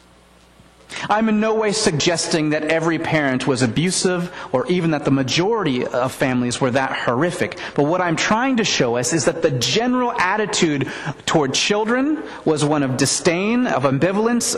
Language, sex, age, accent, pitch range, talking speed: English, male, 30-49, American, 130-210 Hz, 165 wpm